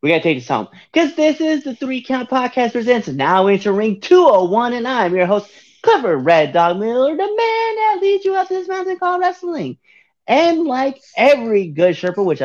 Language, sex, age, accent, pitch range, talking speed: English, male, 30-49, American, 170-250 Hz, 205 wpm